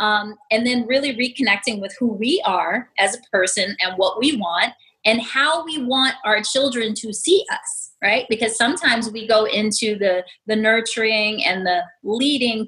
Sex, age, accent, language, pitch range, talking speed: female, 30-49, American, English, 200-250 Hz, 175 wpm